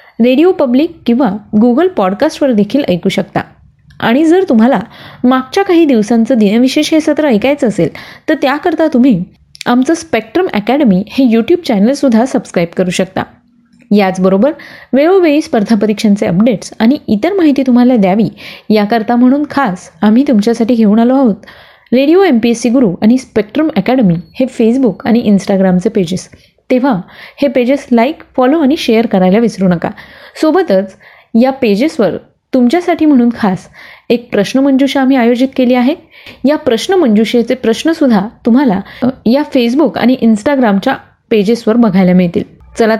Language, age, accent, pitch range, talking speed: Marathi, 20-39, native, 220-280 Hz, 130 wpm